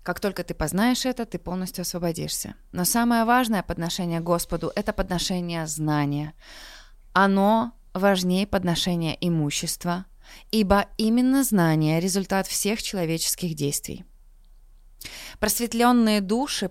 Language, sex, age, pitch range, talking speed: Russian, female, 20-39, 170-220 Hz, 110 wpm